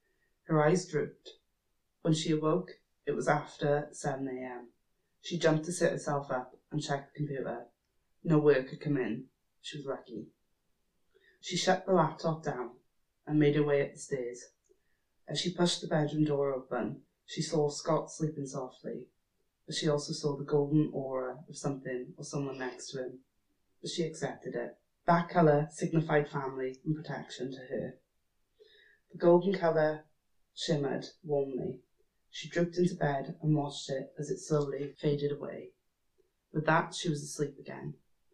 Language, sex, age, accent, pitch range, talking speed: English, female, 20-39, British, 140-160 Hz, 160 wpm